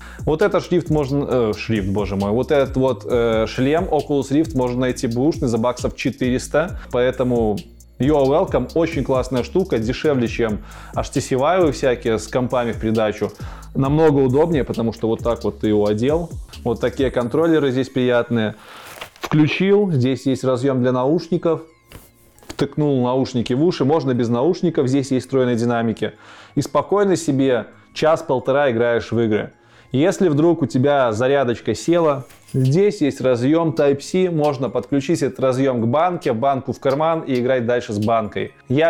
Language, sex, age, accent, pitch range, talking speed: Russian, male, 20-39, native, 115-140 Hz, 155 wpm